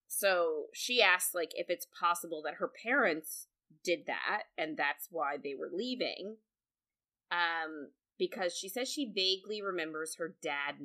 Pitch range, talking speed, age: 160-220 Hz, 150 wpm, 20-39